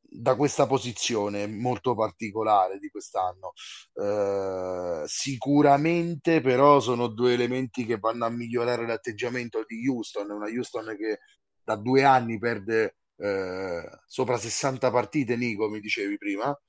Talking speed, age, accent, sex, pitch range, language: 125 wpm, 30-49, native, male, 110-135 Hz, Italian